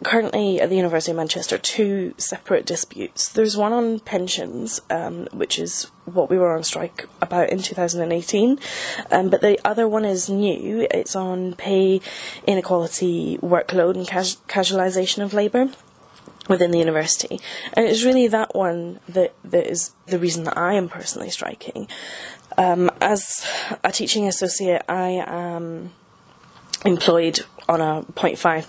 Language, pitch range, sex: English, 175-205 Hz, female